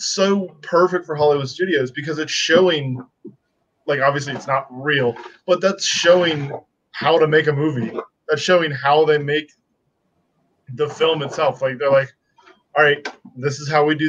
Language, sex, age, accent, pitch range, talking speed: English, male, 20-39, American, 140-175 Hz, 160 wpm